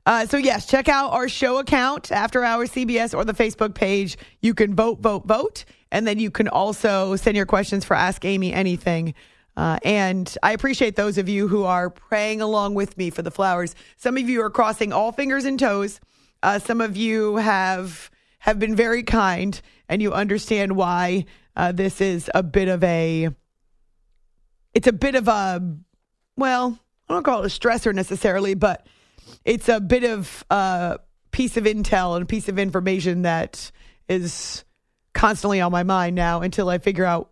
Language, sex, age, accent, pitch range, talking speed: English, female, 30-49, American, 185-230 Hz, 185 wpm